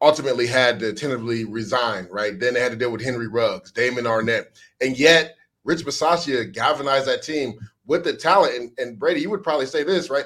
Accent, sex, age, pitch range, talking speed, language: American, male, 30-49, 120-170 Hz, 205 wpm, English